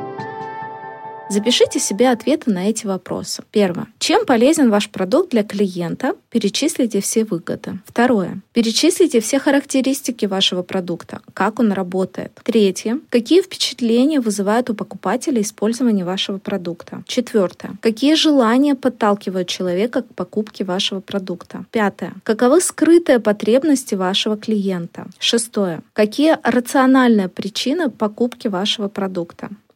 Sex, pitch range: female, 195-255 Hz